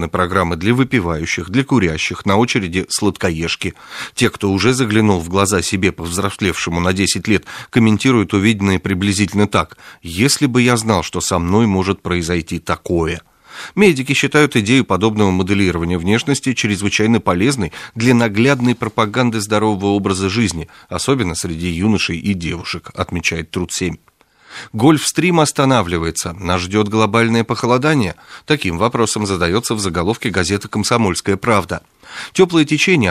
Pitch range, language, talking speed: 95-125 Hz, Russian, 130 wpm